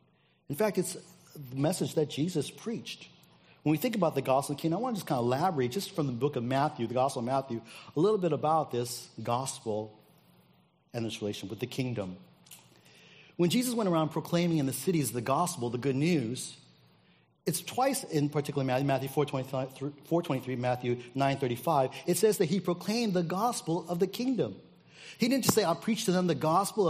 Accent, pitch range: American, 125-170 Hz